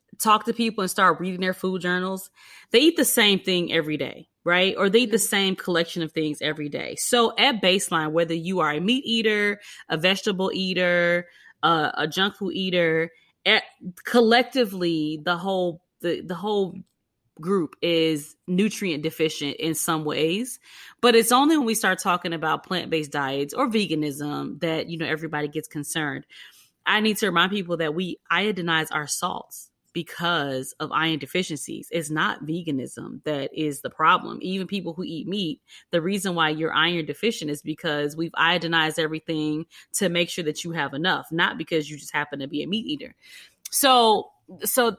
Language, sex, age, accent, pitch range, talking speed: English, female, 20-39, American, 155-205 Hz, 175 wpm